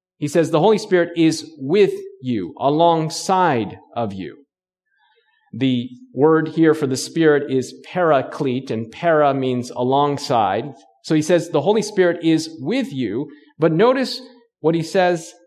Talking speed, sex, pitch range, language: 145 wpm, male, 155-230 Hz, English